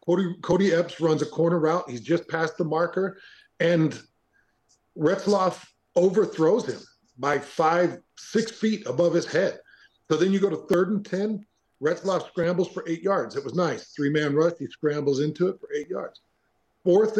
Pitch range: 165-200 Hz